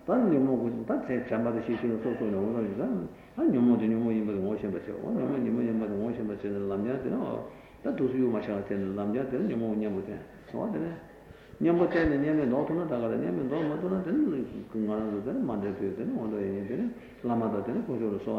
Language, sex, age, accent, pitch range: Italian, male, 60-79, Indian, 105-125 Hz